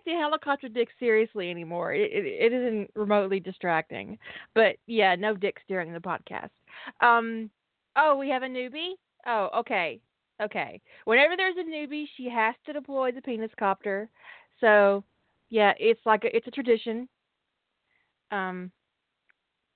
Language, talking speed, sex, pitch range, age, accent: English, 145 wpm, female, 205-280 Hz, 30-49, American